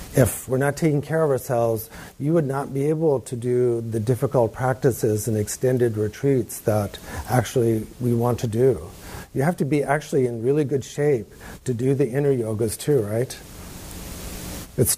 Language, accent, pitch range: English, American, 115-140 Hz